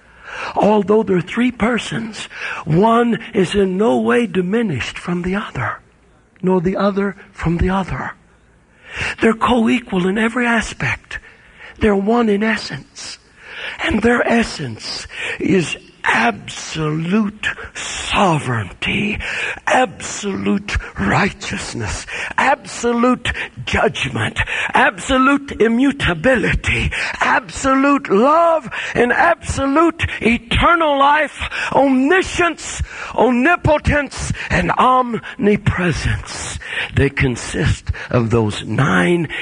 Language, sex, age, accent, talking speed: English, male, 60-79, American, 85 wpm